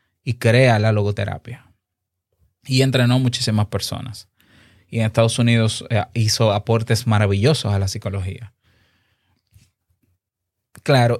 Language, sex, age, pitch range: Spanish, male, 20-39, 105-135 Hz